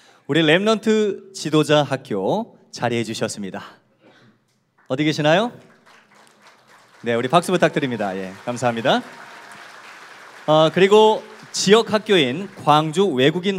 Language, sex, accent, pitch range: Korean, male, native, 135-185 Hz